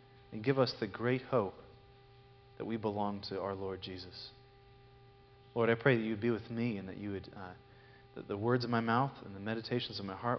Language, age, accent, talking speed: English, 30-49, American, 225 wpm